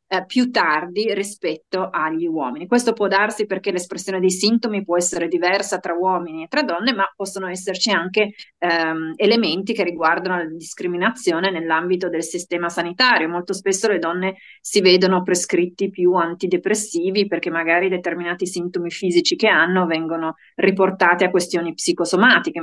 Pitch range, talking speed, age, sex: 170-210 Hz, 145 wpm, 30-49, female